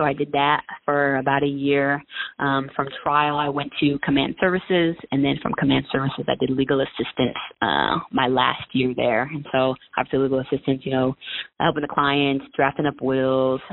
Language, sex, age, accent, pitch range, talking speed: English, female, 20-39, American, 130-145 Hz, 190 wpm